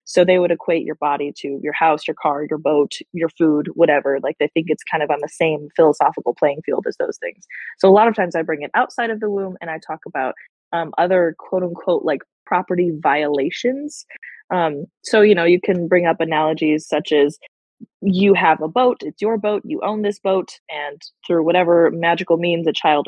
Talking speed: 215 wpm